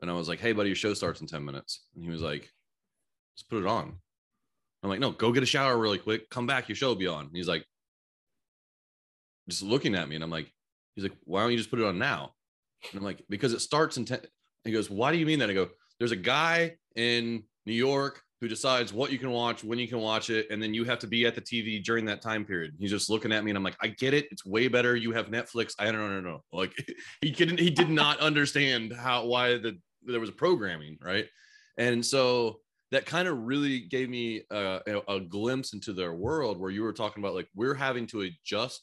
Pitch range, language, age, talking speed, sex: 100-125 Hz, English, 30-49, 255 wpm, male